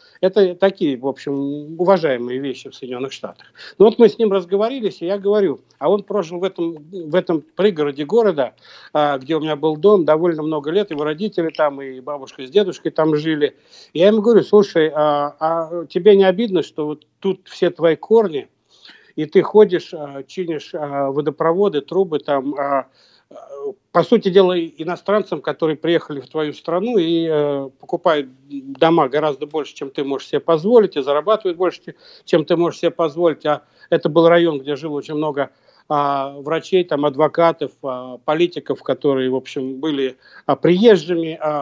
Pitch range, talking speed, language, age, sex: 150-185 Hz, 165 wpm, Russian, 60-79, male